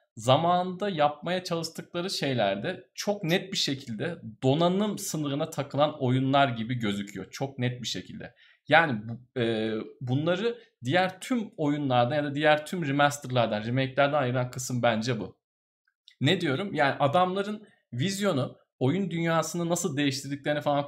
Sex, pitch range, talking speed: male, 125-170 Hz, 125 wpm